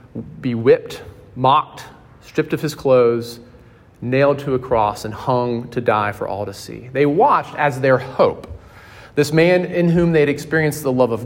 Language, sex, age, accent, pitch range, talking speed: English, male, 30-49, American, 115-150 Hz, 180 wpm